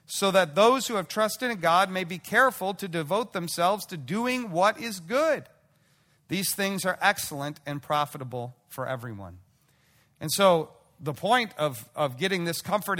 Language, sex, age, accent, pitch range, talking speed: English, male, 40-59, American, 150-200 Hz, 165 wpm